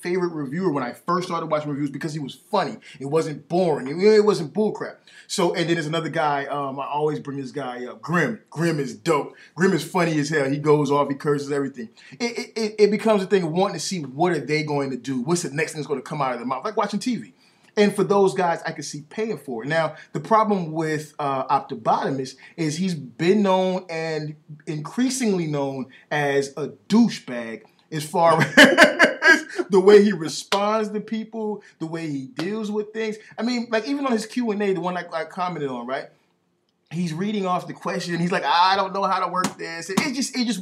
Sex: male